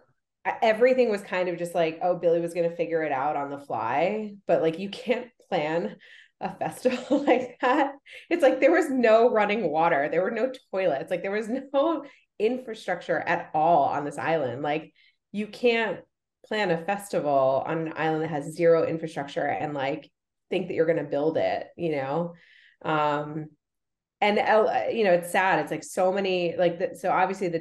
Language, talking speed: English, 190 wpm